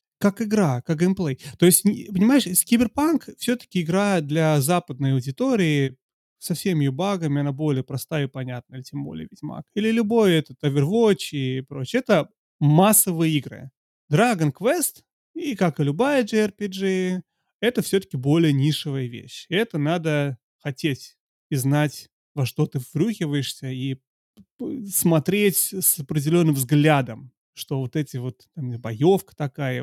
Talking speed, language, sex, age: 130 wpm, Russian, male, 30-49